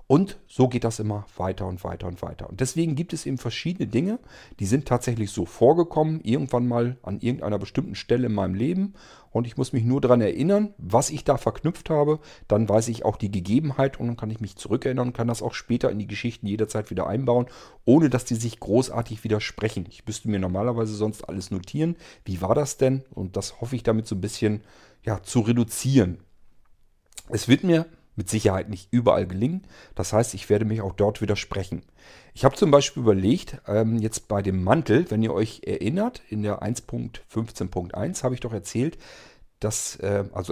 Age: 40-59